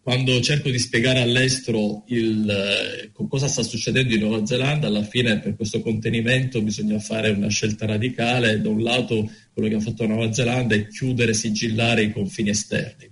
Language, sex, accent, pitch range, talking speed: Italian, male, native, 105-125 Hz, 185 wpm